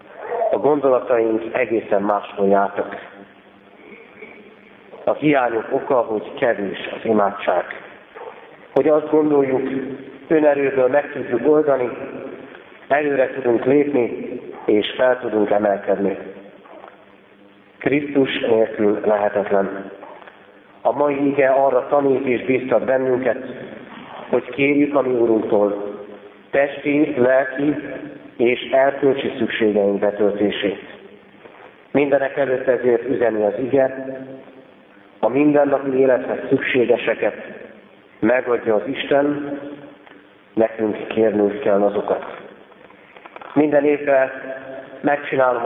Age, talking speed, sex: 50-69, 90 wpm, male